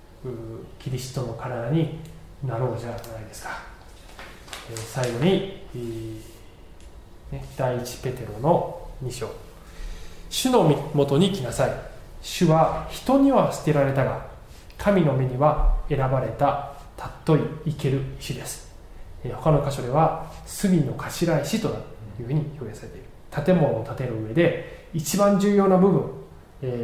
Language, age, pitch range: Japanese, 20-39, 120-165 Hz